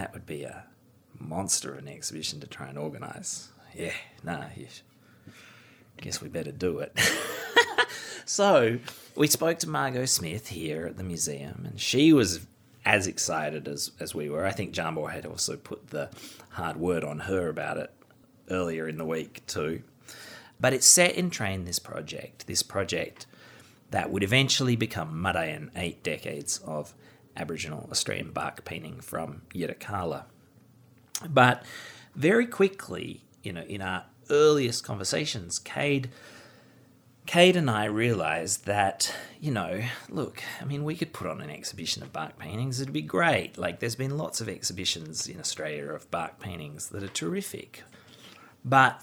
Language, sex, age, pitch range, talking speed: English, male, 30-49, 90-145 Hz, 155 wpm